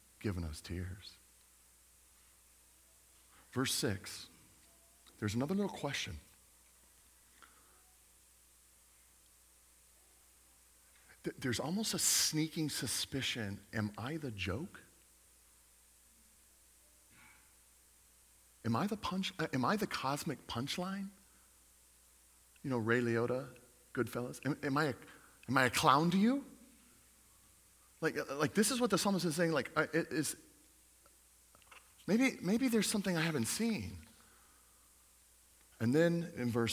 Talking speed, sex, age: 110 wpm, male, 40-59